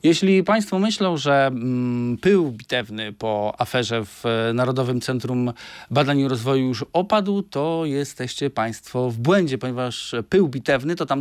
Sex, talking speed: male, 140 wpm